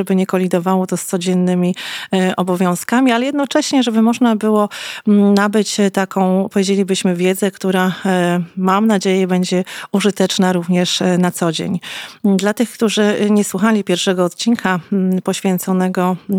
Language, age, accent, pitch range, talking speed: Polish, 30-49, native, 185-210 Hz, 120 wpm